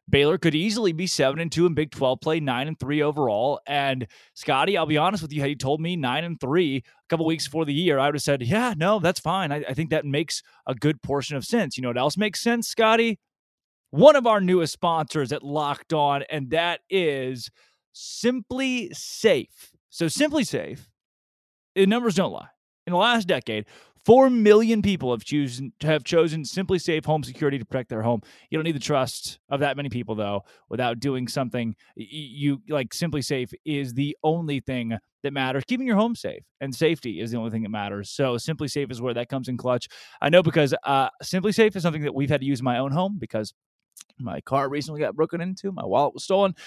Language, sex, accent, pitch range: English, male, American, 125-160 Hz